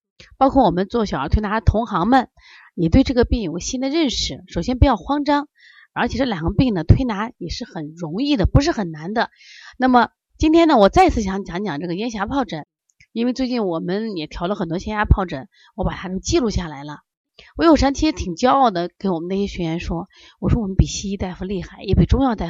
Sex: female